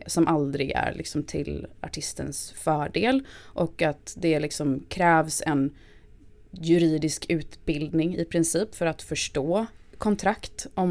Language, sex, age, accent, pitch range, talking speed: Swedish, female, 20-39, native, 145-185 Hz, 120 wpm